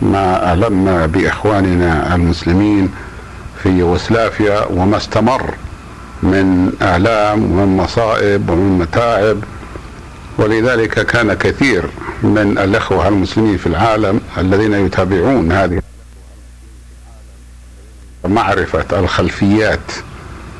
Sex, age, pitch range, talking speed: male, 60-79, 90-110 Hz, 80 wpm